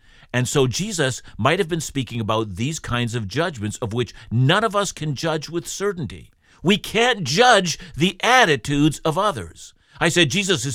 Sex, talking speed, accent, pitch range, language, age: male, 180 wpm, American, 115-165 Hz, English, 50-69